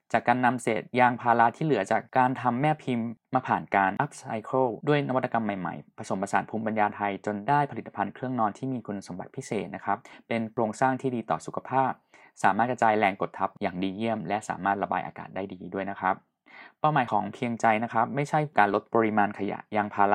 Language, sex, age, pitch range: Thai, male, 20-39, 105-135 Hz